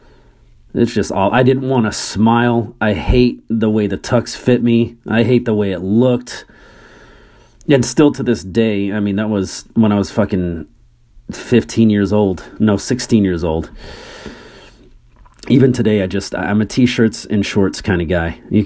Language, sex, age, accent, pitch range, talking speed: English, male, 30-49, American, 95-120 Hz, 175 wpm